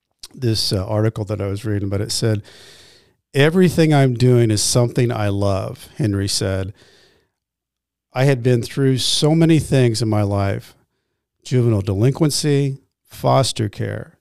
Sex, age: male, 50-69